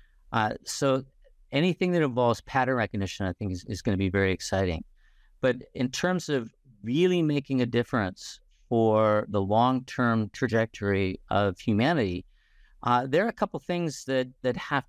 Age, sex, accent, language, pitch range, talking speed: 50-69, male, American, English, 105-130 Hz, 155 wpm